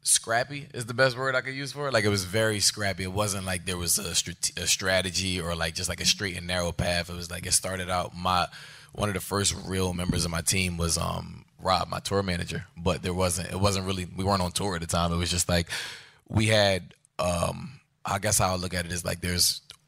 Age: 20-39